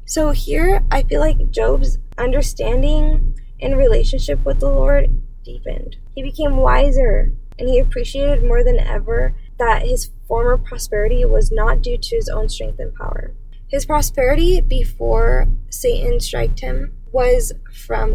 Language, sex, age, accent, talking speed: English, female, 10-29, American, 140 wpm